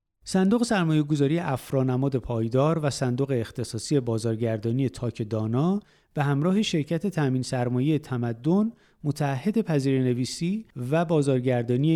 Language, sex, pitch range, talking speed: Persian, male, 120-160 Hz, 110 wpm